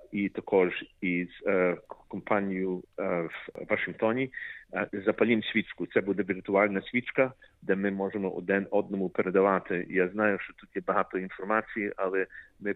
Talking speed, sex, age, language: 140 wpm, male, 40-59, Ukrainian